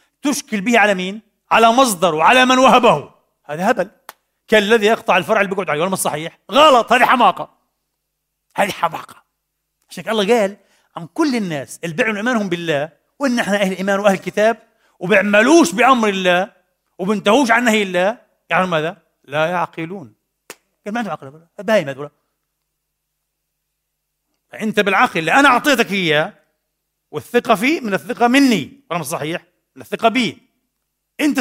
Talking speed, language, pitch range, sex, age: 135 wpm, Arabic, 160-230 Hz, male, 40-59